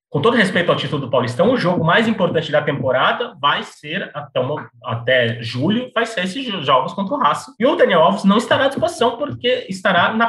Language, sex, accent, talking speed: Portuguese, male, Brazilian, 210 wpm